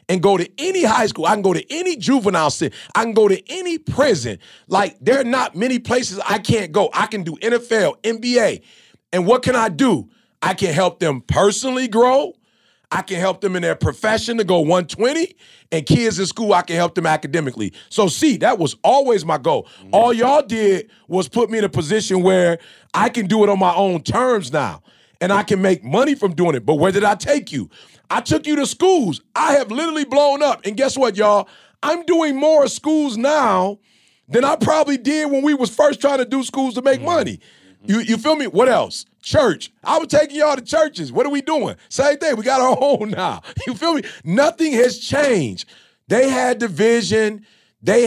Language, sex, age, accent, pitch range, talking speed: English, male, 30-49, American, 195-275 Hz, 215 wpm